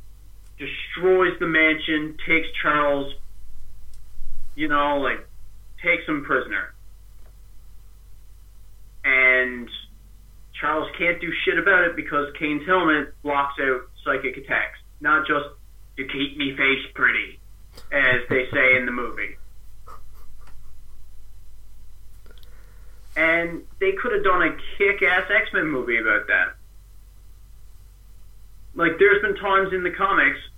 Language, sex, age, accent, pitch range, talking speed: English, male, 30-49, American, 100-160 Hz, 110 wpm